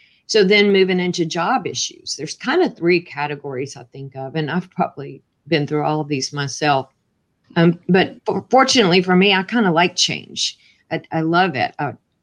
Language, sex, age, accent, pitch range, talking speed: English, female, 40-59, American, 155-190 Hz, 185 wpm